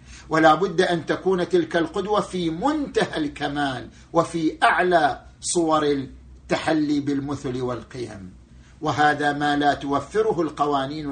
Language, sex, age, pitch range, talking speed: Arabic, male, 50-69, 145-180 Hz, 110 wpm